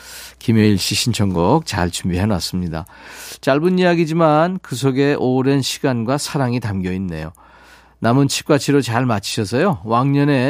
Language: Korean